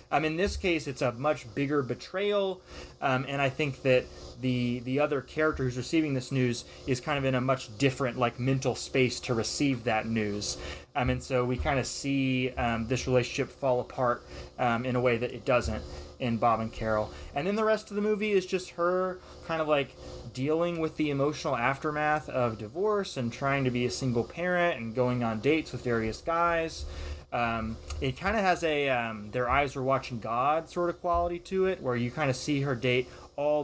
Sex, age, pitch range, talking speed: male, 20-39, 120-155 Hz, 210 wpm